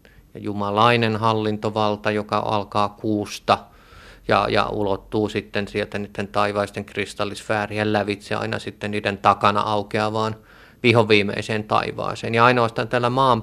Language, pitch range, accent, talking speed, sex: Finnish, 105-125 Hz, native, 110 wpm, male